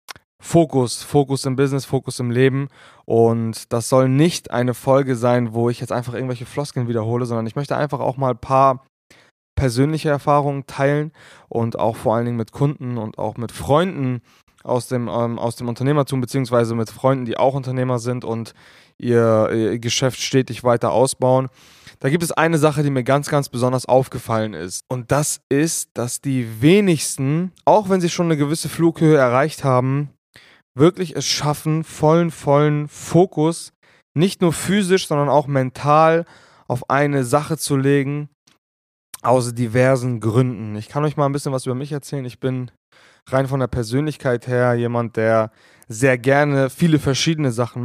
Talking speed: 170 wpm